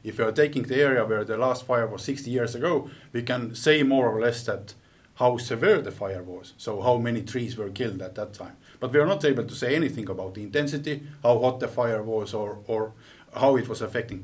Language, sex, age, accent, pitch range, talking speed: Finnish, male, 50-69, native, 105-130 Hz, 240 wpm